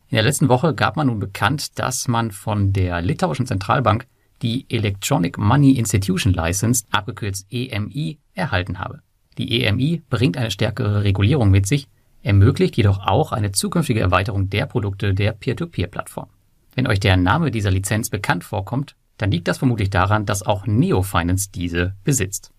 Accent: German